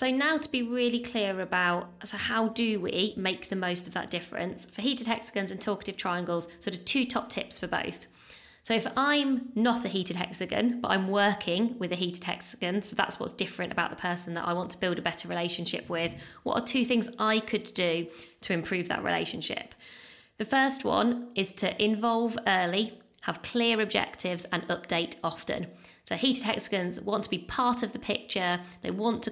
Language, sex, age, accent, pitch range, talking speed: English, female, 20-39, British, 175-225 Hz, 195 wpm